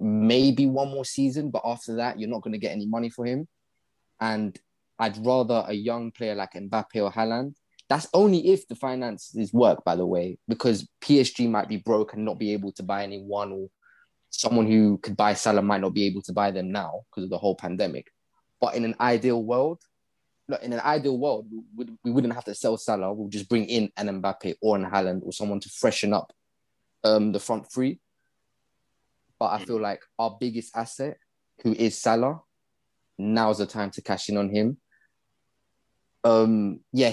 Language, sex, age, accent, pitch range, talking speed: English, male, 20-39, British, 105-120 Hz, 195 wpm